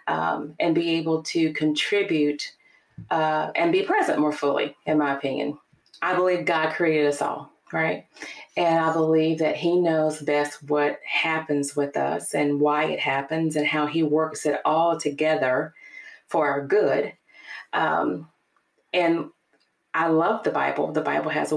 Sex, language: female, English